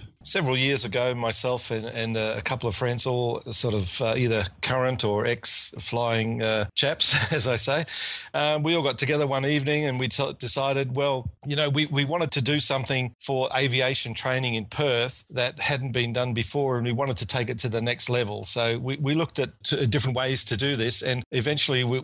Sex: male